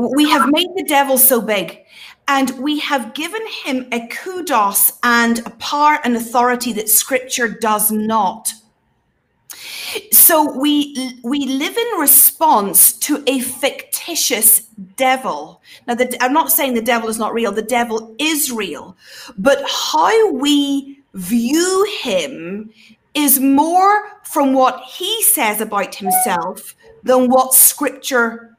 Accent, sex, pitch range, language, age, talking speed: British, female, 240-320 Hz, English, 40-59, 130 wpm